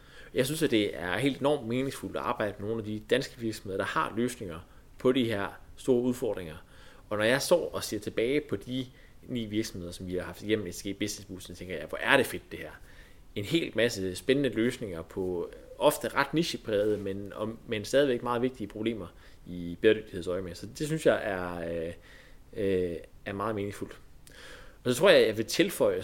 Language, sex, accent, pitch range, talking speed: Danish, male, native, 95-130 Hz, 205 wpm